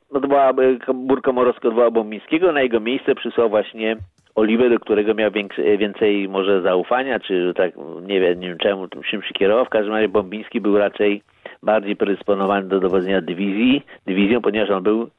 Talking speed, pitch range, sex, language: 175 wpm, 100-135 Hz, male, Polish